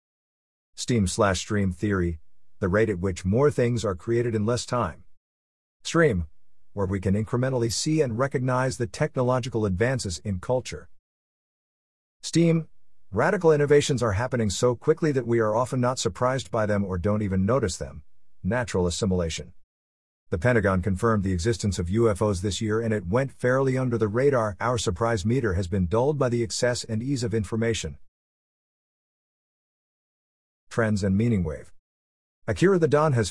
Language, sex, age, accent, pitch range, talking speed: English, male, 50-69, American, 90-125 Hz, 155 wpm